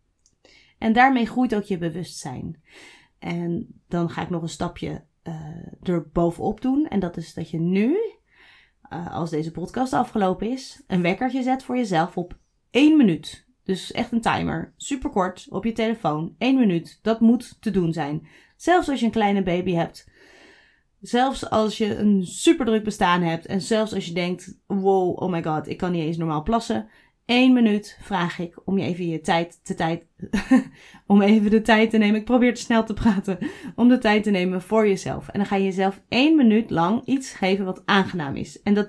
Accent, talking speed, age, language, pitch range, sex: Dutch, 195 wpm, 30-49, Dutch, 175-230 Hz, female